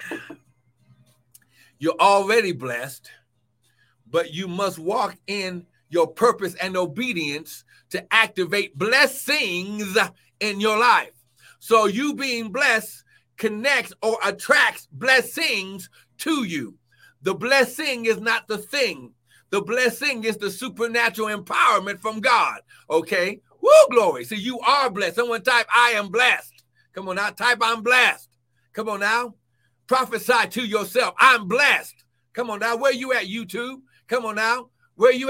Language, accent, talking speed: English, American, 135 wpm